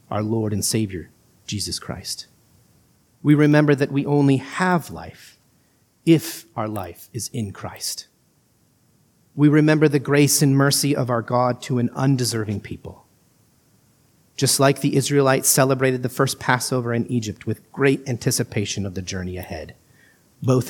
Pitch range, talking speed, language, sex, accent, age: 115-150 Hz, 145 wpm, English, male, American, 40-59